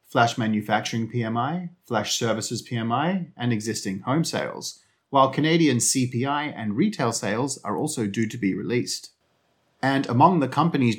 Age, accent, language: 30-49, Australian, English